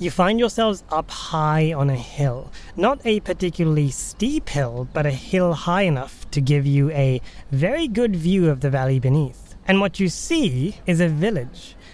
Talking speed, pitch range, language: 180 wpm, 130-165 Hz, English